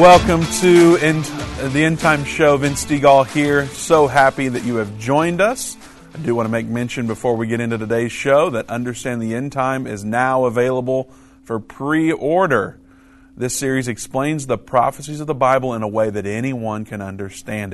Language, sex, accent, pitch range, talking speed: English, male, American, 110-135 Hz, 180 wpm